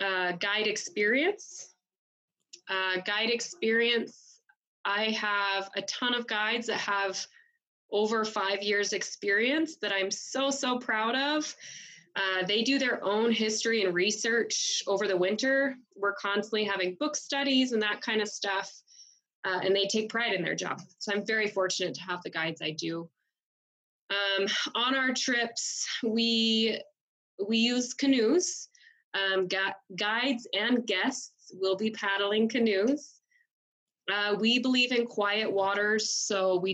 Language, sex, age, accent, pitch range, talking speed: English, female, 20-39, American, 195-235 Hz, 140 wpm